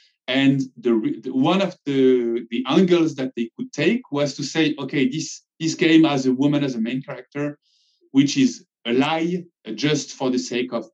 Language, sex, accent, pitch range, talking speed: English, male, French, 120-165 Hz, 195 wpm